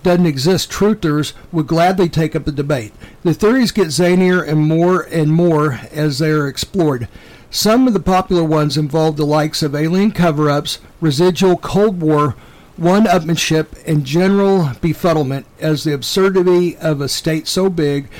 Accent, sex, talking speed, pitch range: American, male, 160 wpm, 145-175 Hz